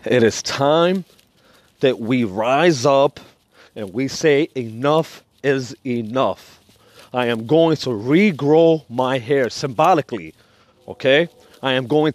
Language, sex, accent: English, male, American